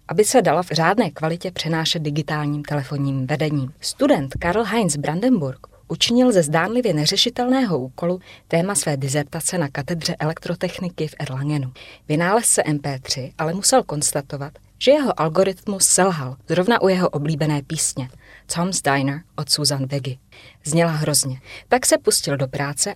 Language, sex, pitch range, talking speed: Czech, female, 140-180 Hz, 140 wpm